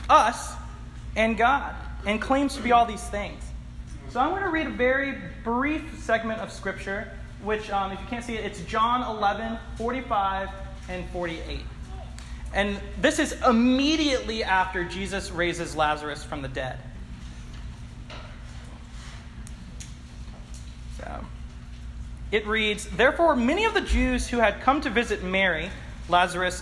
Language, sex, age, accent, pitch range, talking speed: English, male, 30-49, American, 175-260 Hz, 135 wpm